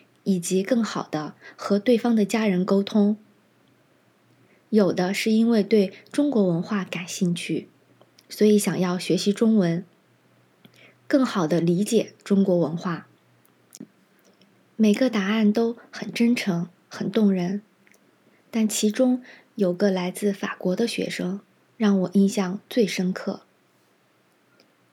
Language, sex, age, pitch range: Chinese, female, 20-39, 185-220 Hz